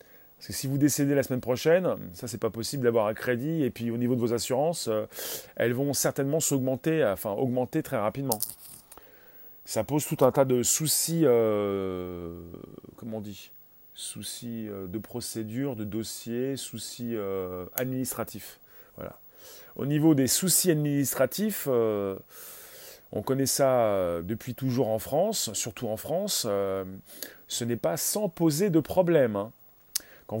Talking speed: 155 wpm